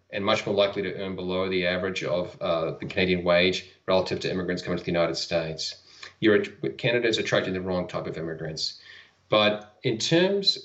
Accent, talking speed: Australian, 185 wpm